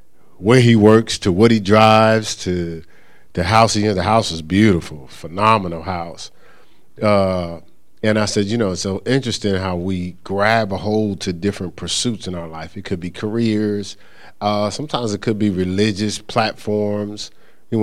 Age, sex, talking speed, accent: 40-59, male, 175 wpm, American